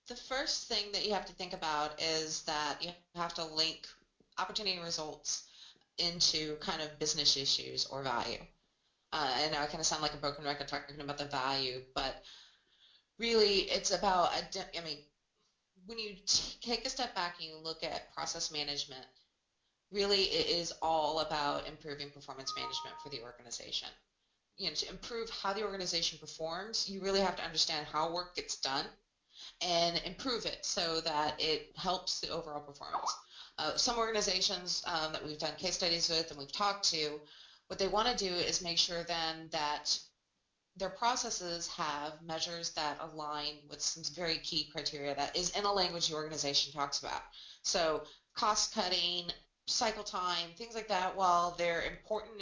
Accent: American